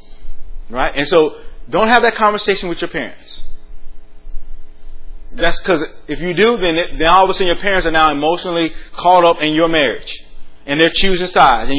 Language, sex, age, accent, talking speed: English, male, 30-49, American, 185 wpm